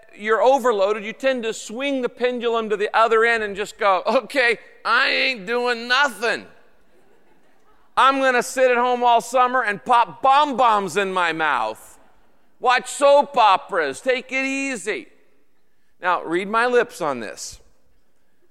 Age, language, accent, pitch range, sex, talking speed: 50-69, English, American, 205-255 Hz, male, 150 wpm